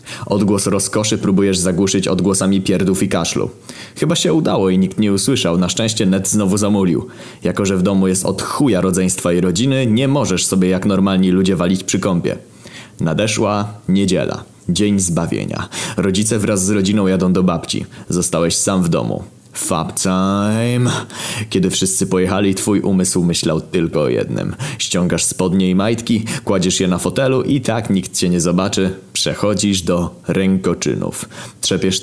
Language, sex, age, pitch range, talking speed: Polish, male, 20-39, 90-105 Hz, 155 wpm